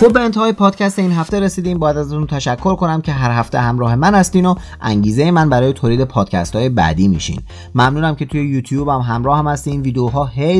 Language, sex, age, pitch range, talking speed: Persian, male, 30-49, 110-150 Hz, 205 wpm